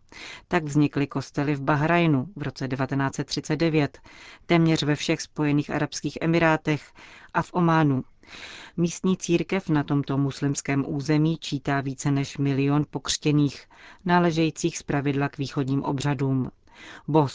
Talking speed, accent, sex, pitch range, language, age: 120 wpm, native, female, 140-155 Hz, Czech, 40-59